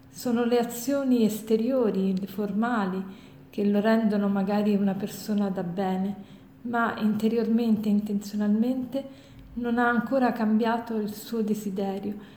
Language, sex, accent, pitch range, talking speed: Italian, female, native, 205-230 Hz, 110 wpm